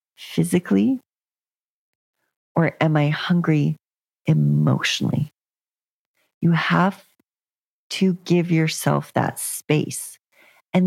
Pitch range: 150-190 Hz